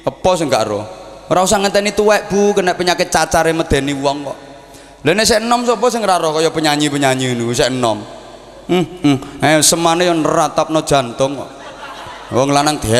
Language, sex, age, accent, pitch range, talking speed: Indonesian, male, 20-39, native, 140-190 Hz, 70 wpm